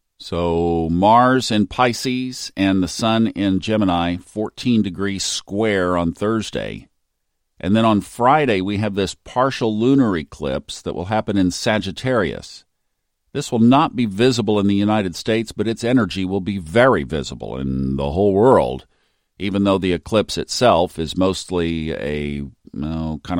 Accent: American